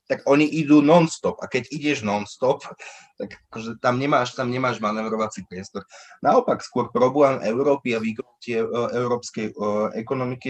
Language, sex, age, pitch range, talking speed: Slovak, male, 20-39, 100-130 Hz, 135 wpm